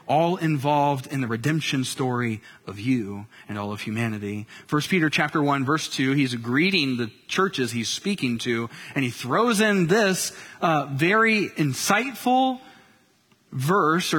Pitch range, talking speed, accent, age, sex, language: 150-210 Hz, 145 wpm, American, 30-49, male, English